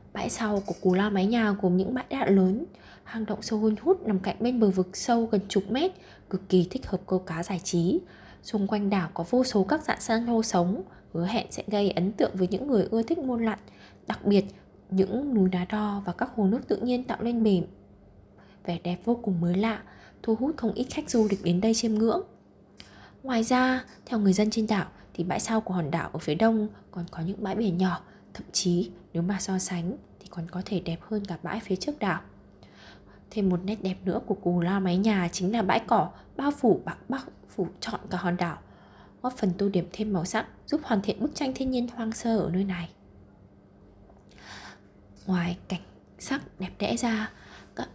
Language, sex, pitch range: Vietnamese, female, 180-225 Hz